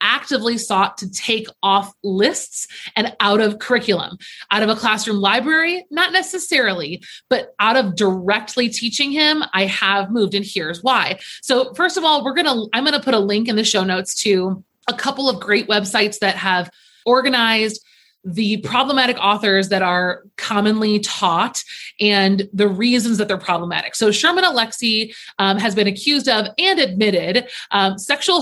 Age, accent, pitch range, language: 30-49, American, 195-255 Hz, English